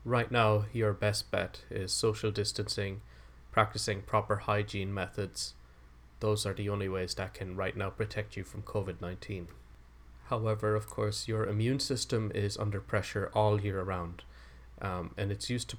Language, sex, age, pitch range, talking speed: English, male, 20-39, 95-110 Hz, 155 wpm